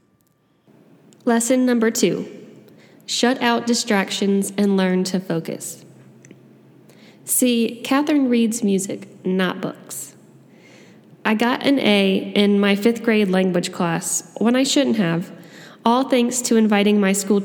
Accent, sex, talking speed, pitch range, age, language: American, female, 125 wpm, 195-235 Hz, 10-29, English